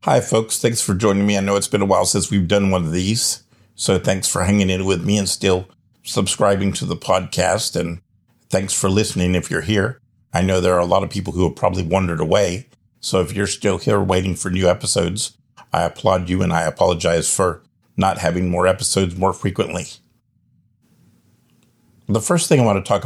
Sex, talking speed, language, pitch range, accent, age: male, 210 wpm, English, 90-100 Hz, American, 50-69